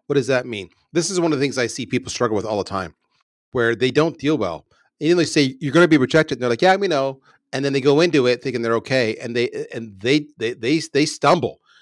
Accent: American